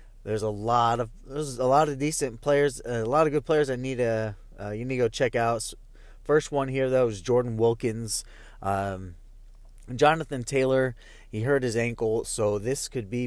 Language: English